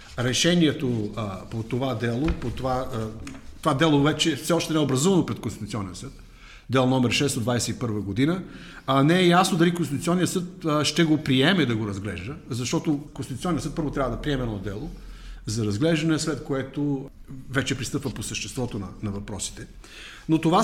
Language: Bulgarian